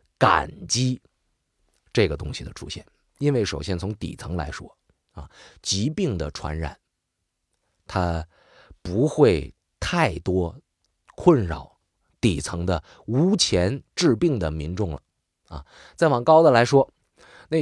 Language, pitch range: Chinese, 95-145 Hz